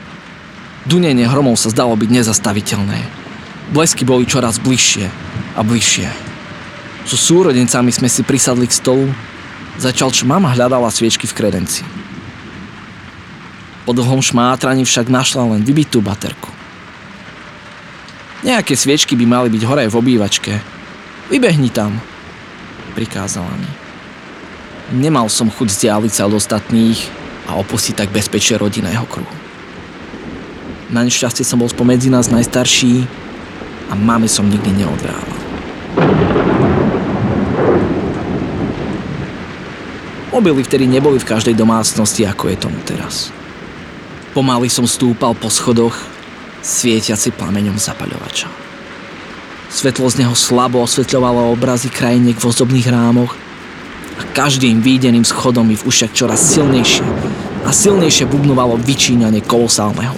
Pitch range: 110-130 Hz